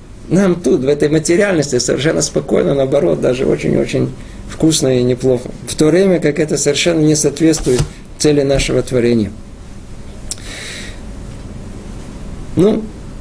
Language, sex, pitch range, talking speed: Russian, male, 115-190 Hz, 115 wpm